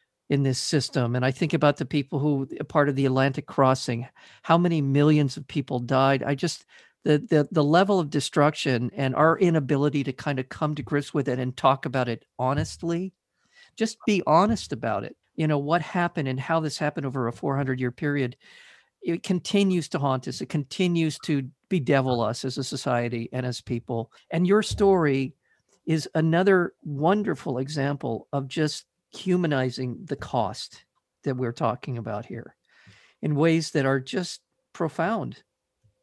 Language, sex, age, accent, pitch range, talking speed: English, male, 50-69, American, 135-165 Hz, 170 wpm